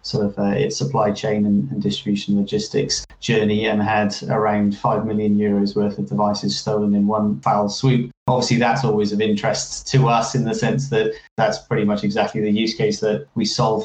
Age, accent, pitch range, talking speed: 30-49, British, 105-120 Hz, 195 wpm